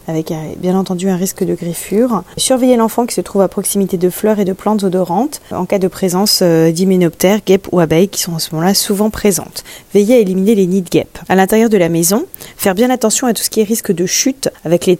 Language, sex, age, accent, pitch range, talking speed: French, female, 20-39, French, 185-220 Hz, 240 wpm